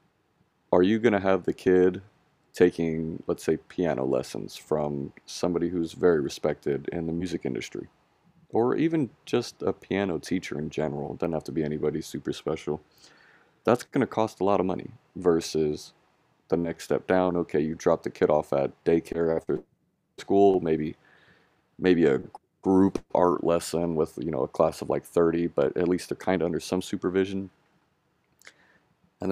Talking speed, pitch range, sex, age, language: 170 wpm, 80-95 Hz, male, 30-49, English